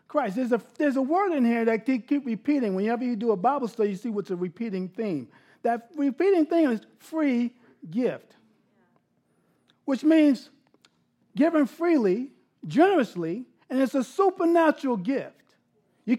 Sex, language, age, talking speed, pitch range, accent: male, English, 50-69, 150 wpm, 220-290 Hz, American